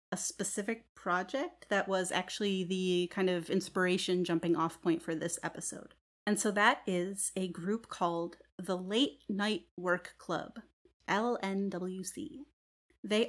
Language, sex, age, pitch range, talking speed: English, female, 30-49, 185-225 Hz, 135 wpm